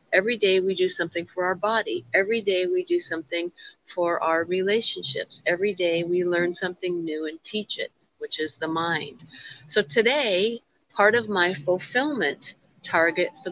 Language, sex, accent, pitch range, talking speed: English, female, American, 170-230 Hz, 165 wpm